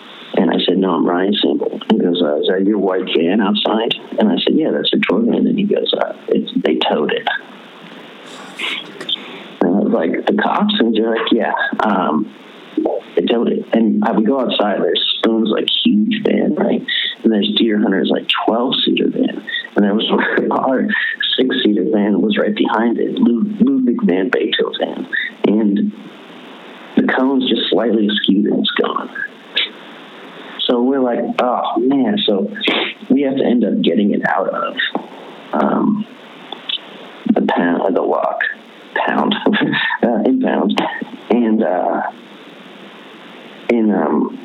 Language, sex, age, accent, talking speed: English, male, 50-69, American, 160 wpm